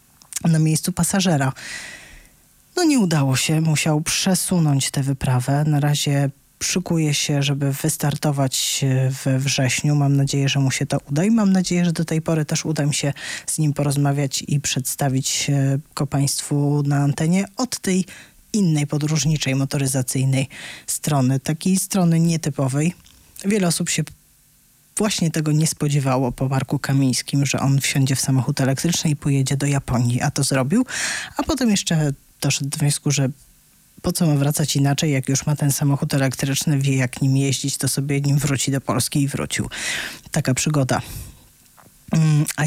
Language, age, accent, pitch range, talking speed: Polish, 20-39, native, 135-160 Hz, 155 wpm